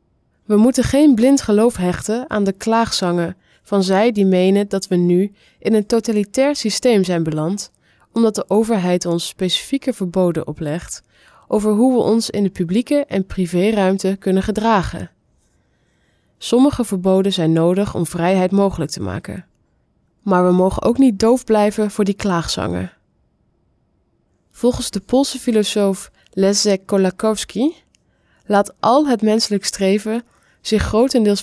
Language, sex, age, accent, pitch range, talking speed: English, female, 20-39, Dutch, 180-225 Hz, 135 wpm